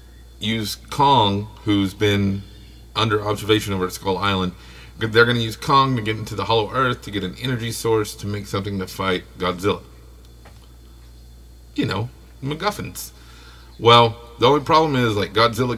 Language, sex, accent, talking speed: English, male, American, 155 wpm